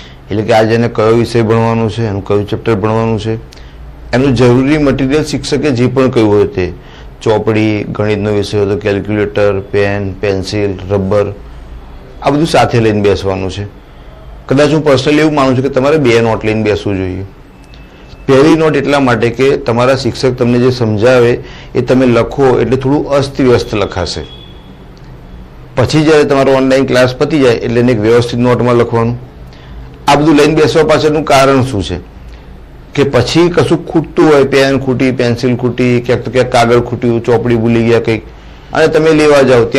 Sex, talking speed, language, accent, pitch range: male, 100 wpm, Hindi, native, 100-135 Hz